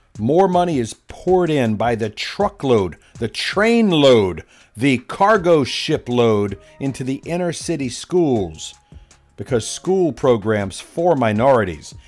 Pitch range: 110-185 Hz